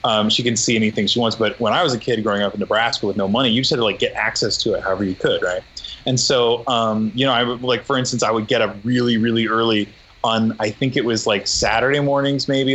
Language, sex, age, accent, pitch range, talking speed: English, male, 20-39, American, 105-130 Hz, 280 wpm